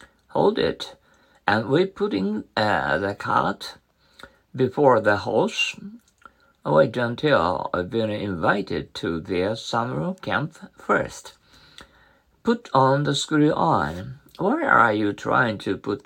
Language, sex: Japanese, male